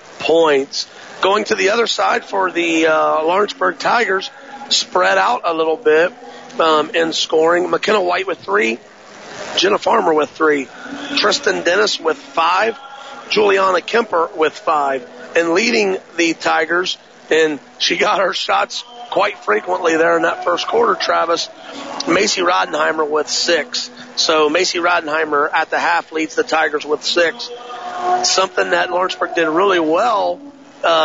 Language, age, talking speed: English, 40-59, 145 wpm